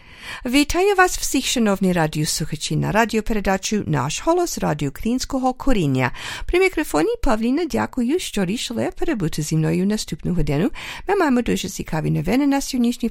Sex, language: female, English